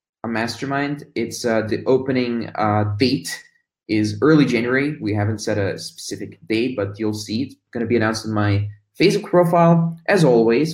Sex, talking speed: male, 170 wpm